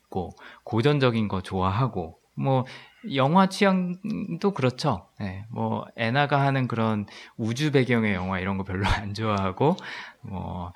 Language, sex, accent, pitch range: Korean, male, native, 95-145 Hz